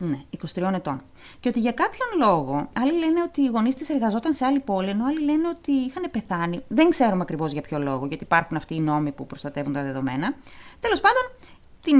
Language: Greek